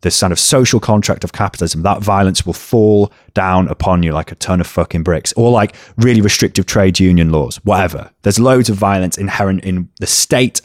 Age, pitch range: 20-39, 90-120 Hz